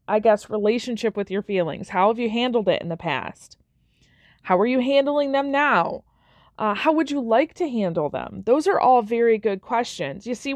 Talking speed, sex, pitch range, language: 205 wpm, female, 205-265 Hz, English